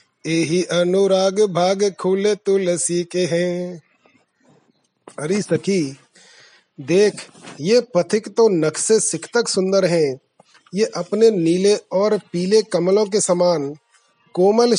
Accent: native